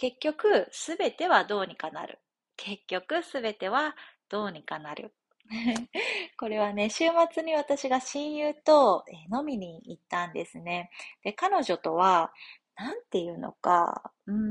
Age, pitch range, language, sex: 30-49, 190-300 Hz, Japanese, female